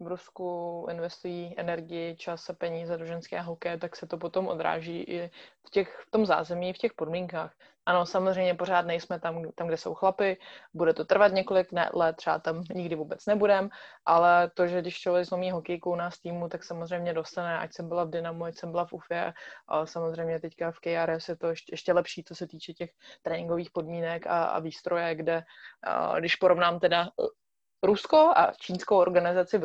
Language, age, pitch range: Czech, 20-39, 165-180 Hz